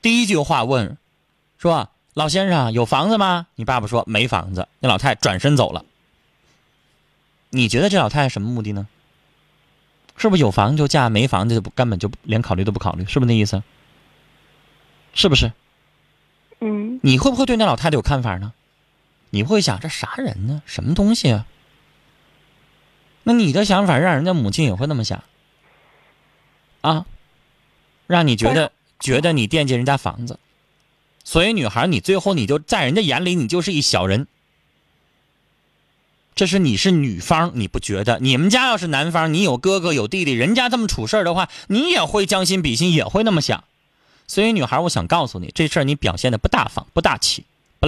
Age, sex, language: 20-39, male, Chinese